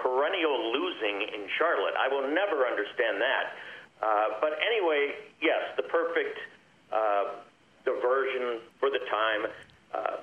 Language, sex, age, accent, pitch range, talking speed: English, male, 50-69, American, 130-165 Hz, 125 wpm